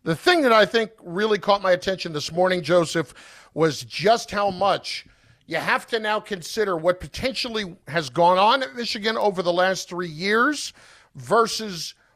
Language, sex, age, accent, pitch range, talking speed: English, male, 50-69, American, 155-210 Hz, 170 wpm